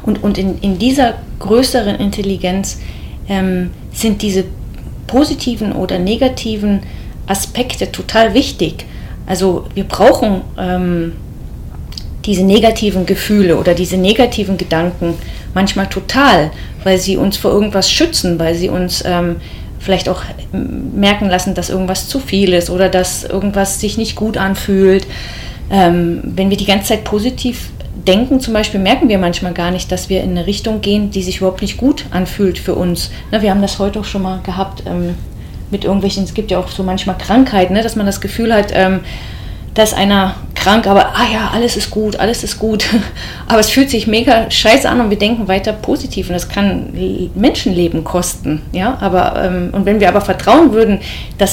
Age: 30-49